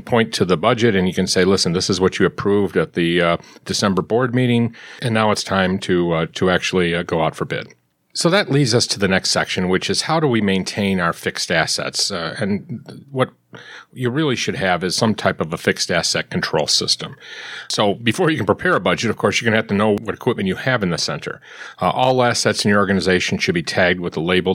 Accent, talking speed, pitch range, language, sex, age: American, 240 wpm, 95-120 Hz, English, male, 40-59